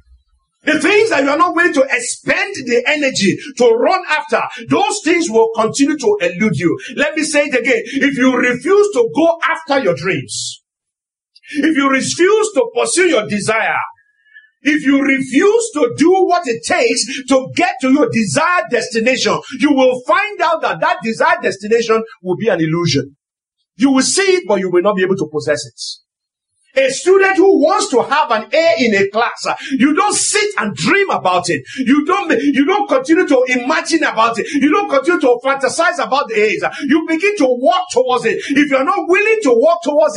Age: 50-69